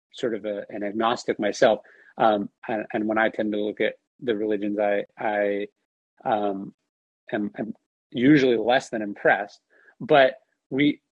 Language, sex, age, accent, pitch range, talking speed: English, male, 30-49, American, 115-165 Hz, 150 wpm